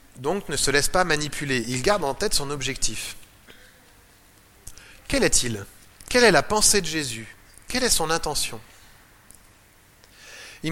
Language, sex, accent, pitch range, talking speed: French, male, French, 100-165 Hz, 140 wpm